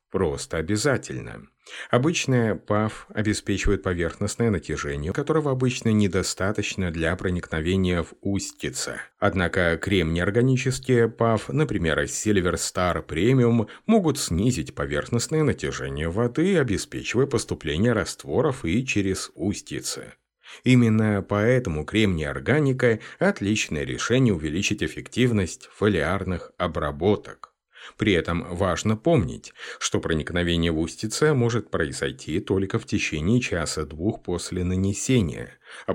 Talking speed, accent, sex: 100 wpm, native, male